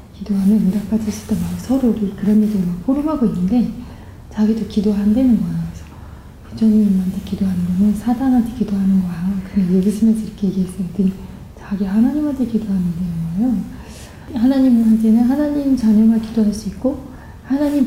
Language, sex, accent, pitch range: Korean, female, native, 200-250 Hz